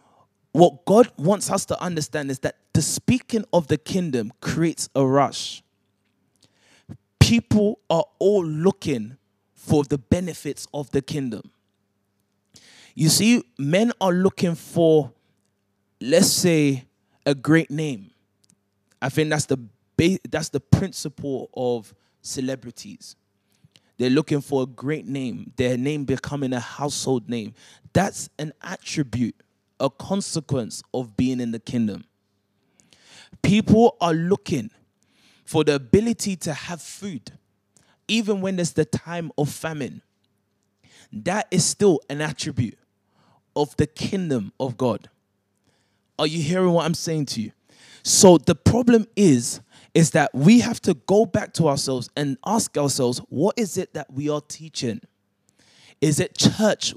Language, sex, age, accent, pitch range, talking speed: English, male, 20-39, Nigerian, 125-170 Hz, 135 wpm